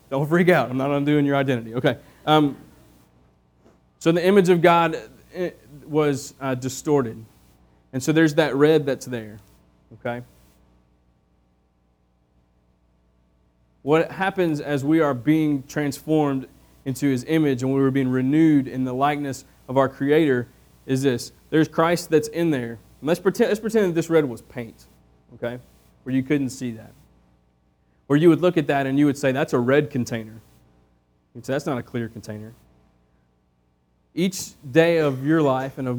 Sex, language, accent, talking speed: male, English, American, 165 wpm